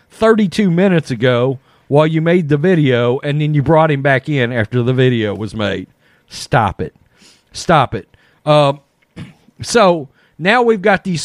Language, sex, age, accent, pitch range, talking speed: English, male, 40-59, American, 125-170 Hz, 160 wpm